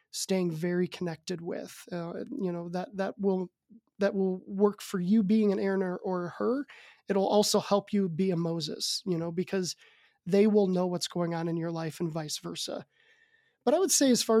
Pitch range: 180-215 Hz